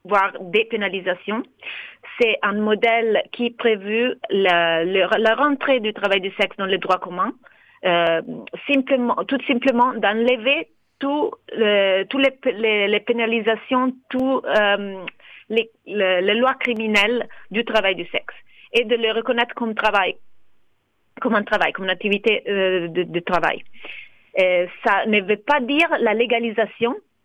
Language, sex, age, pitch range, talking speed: French, female, 30-49, 185-235 Hz, 145 wpm